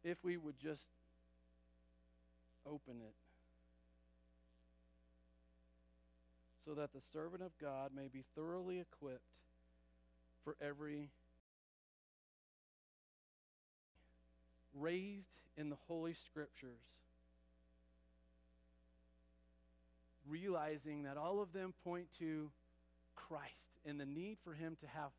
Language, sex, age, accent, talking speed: English, male, 40-59, American, 90 wpm